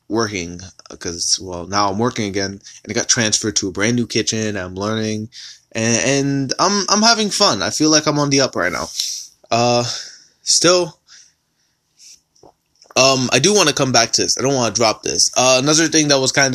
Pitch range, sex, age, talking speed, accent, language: 110-140 Hz, male, 20-39, 210 wpm, American, English